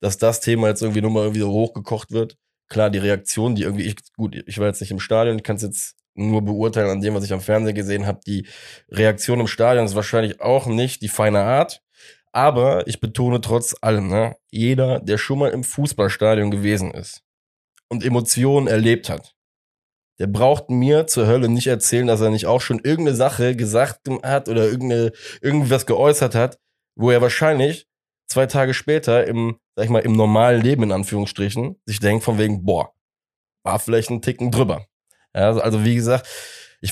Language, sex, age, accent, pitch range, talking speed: German, male, 20-39, German, 105-120 Hz, 190 wpm